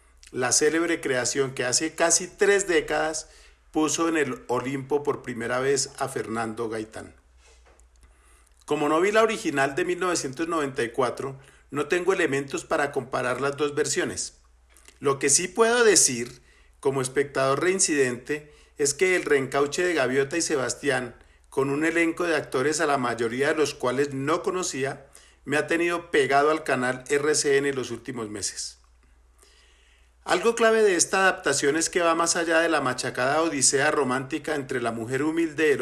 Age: 40-59